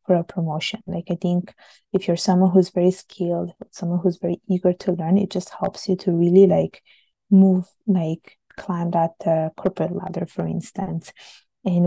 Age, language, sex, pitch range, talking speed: 20-39, English, female, 170-190 Hz, 170 wpm